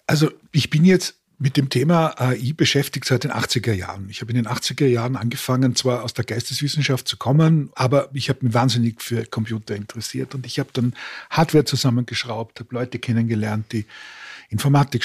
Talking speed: 180 wpm